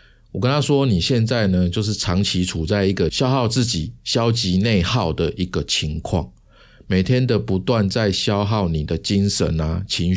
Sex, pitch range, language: male, 90-115 Hz, Chinese